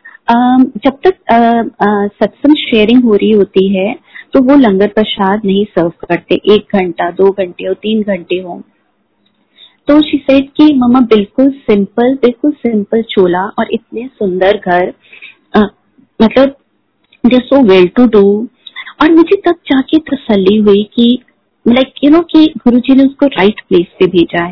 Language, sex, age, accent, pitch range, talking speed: Hindi, female, 30-49, native, 185-240 Hz, 155 wpm